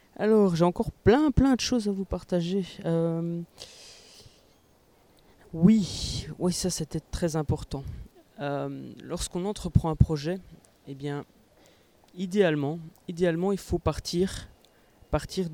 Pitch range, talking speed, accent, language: 145-175 Hz, 115 wpm, French, French